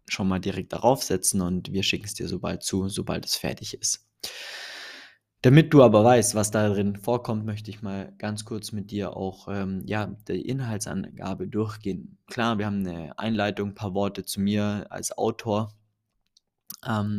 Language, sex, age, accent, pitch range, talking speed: German, male, 20-39, German, 100-110 Hz, 170 wpm